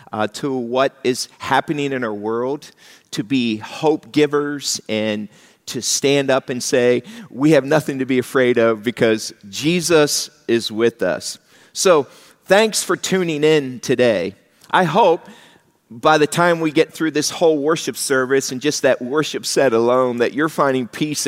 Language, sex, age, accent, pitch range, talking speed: English, male, 40-59, American, 125-150 Hz, 165 wpm